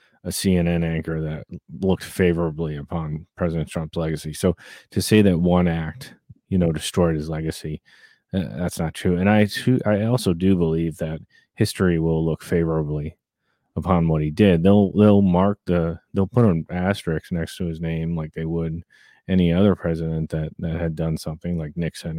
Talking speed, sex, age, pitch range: 175 wpm, male, 30-49, 80-100 Hz